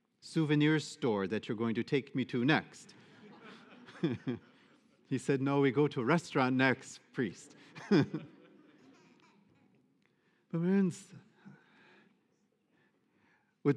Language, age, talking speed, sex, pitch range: English, 50-69, 95 wpm, male, 125-165 Hz